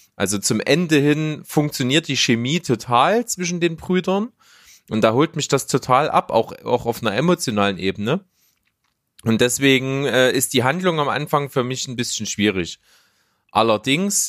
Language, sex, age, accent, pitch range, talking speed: German, male, 30-49, German, 110-150 Hz, 160 wpm